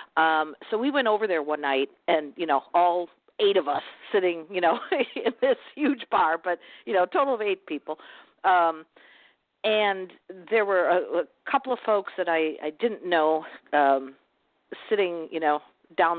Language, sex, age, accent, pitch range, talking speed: English, female, 50-69, American, 160-210 Hz, 180 wpm